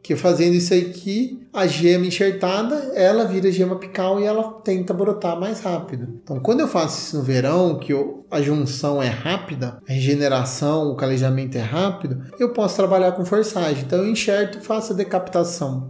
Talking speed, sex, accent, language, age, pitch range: 175 wpm, male, Brazilian, Portuguese, 30-49, 145-190 Hz